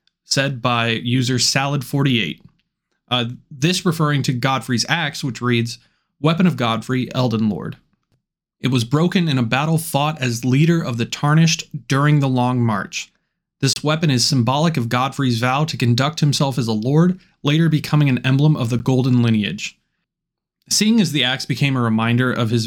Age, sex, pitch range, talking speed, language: 20-39, male, 120-150 Hz, 165 wpm, English